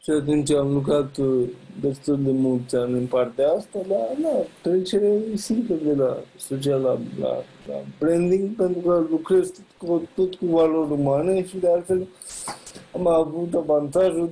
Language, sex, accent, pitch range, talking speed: English, male, Indian, 140-175 Hz, 155 wpm